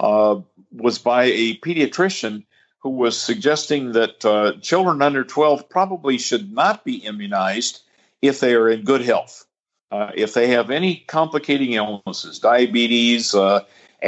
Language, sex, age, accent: English, male, 50-69, American